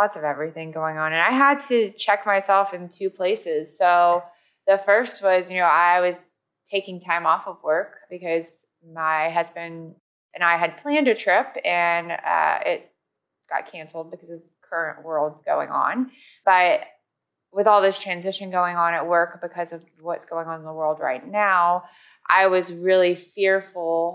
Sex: female